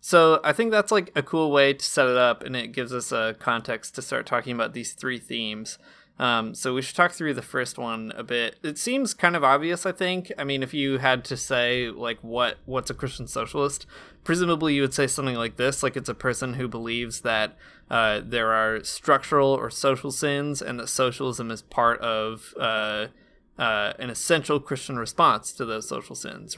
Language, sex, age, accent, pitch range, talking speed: English, male, 20-39, American, 120-145 Hz, 210 wpm